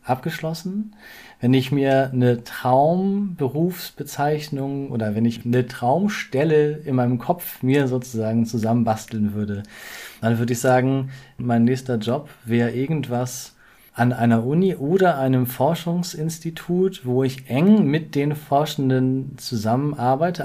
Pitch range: 115-140 Hz